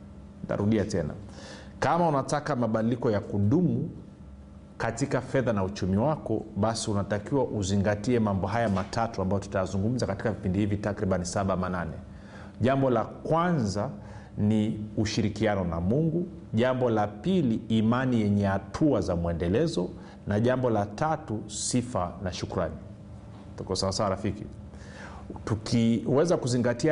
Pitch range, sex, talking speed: 100-120 Hz, male, 120 wpm